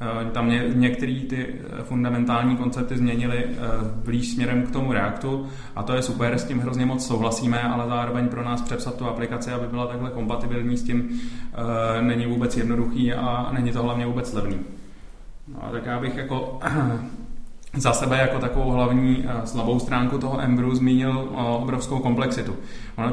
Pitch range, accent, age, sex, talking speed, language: 120-135 Hz, native, 30-49, male, 160 wpm, Czech